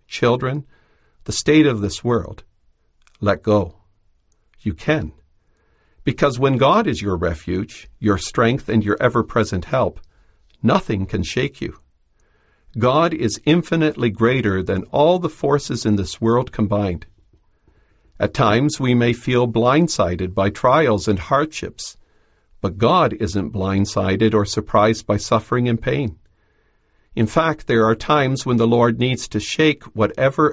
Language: English